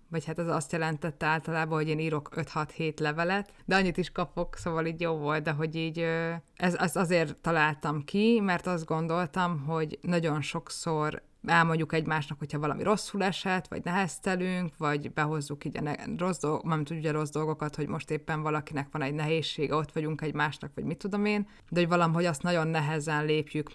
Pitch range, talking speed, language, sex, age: 150-170 Hz, 170 wpm, Hungarian, female, 20-39